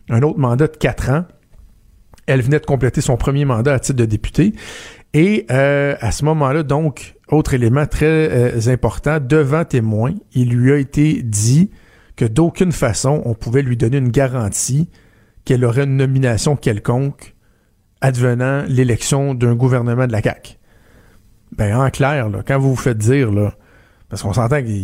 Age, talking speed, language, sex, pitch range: 50-69, 165 wpm, French, male, 120-150 Hz